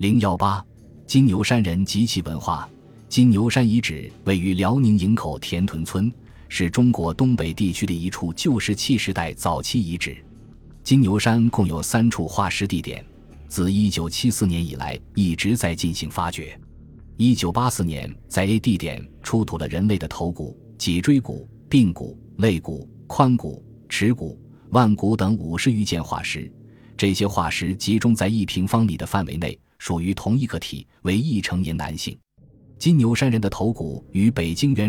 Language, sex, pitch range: Chinese, male, 85-115 Hz